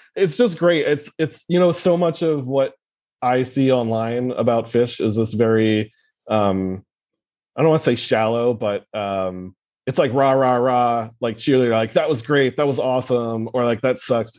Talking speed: 190 wpm